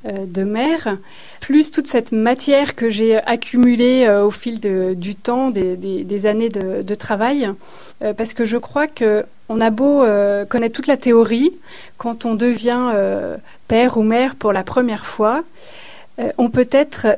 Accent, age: French, 30-49